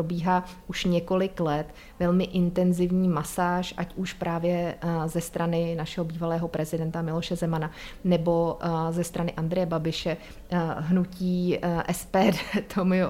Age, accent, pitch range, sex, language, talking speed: 30-49, native, 170-185 Hz, female, Czech, 115 wpm